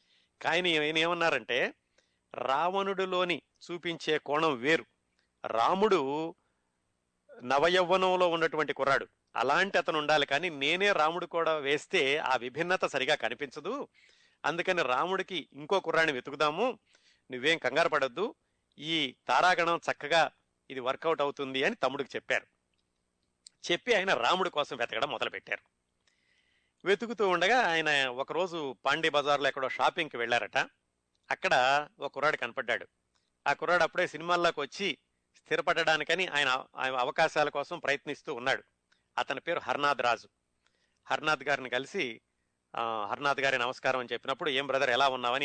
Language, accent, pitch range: Telugu, native, 130-165 Hz